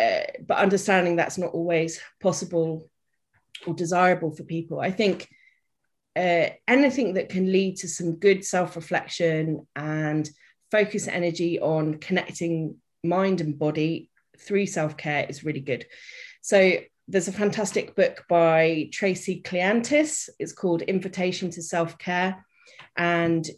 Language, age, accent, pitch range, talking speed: English, 30-49, British, 165-190 Hz, 125 wpm